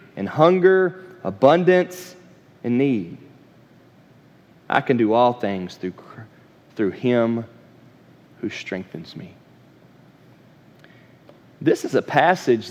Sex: male